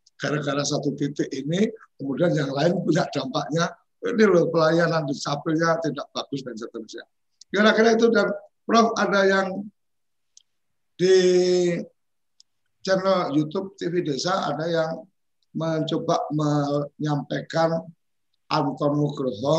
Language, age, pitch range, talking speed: Indonesian, 50-69, 135-165 Hz, 105 wpm